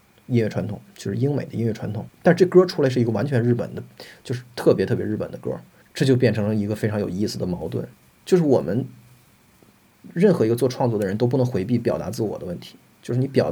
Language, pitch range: Chinese, 110-135 Hz